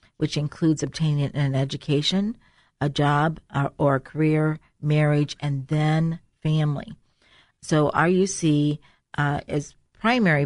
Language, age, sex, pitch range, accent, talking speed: English, 40-59, female, 140-165 Hz, American, 115 wpm